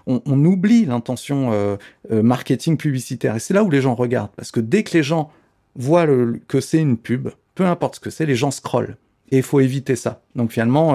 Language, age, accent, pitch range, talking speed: French, 40-59, French, 115-140 Hz, 230 wpm